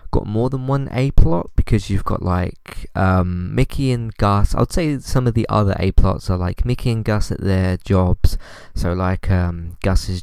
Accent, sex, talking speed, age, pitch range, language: British, male, 205 wpm, 20-39, 85-100 Hz, English